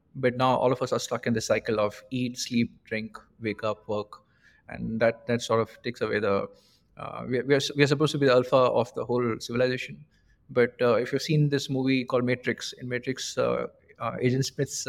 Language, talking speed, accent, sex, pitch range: English, 215 wpm, Indian, male, 115-140 Hz